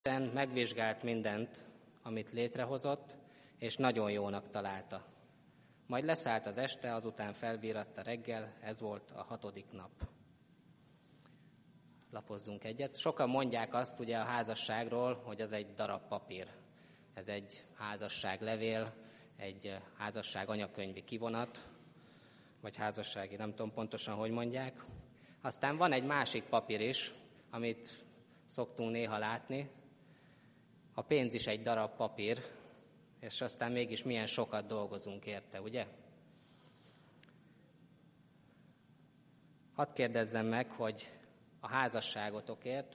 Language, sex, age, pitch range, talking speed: Hungarian, male, 20-39, 105-125 Hz, 110 wpm